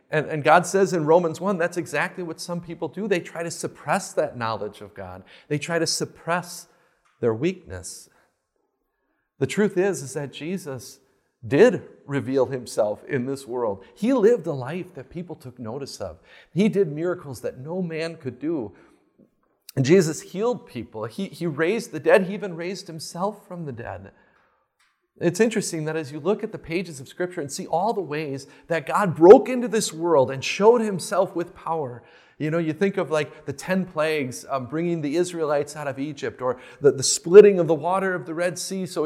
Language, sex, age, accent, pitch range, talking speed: English, male, 40-59, American, 155-200 Hz, 195 wpm